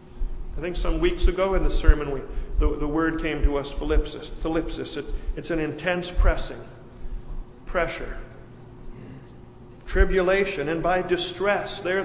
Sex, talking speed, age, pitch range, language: male, 140 wpm, 50-69, 155-180 Hz, English